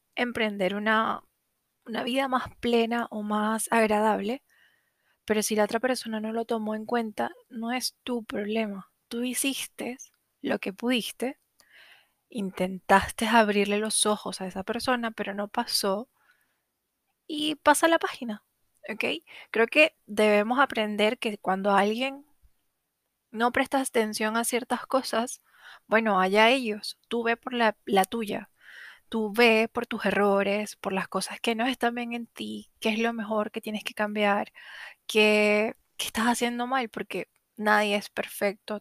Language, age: Spanish, 20-39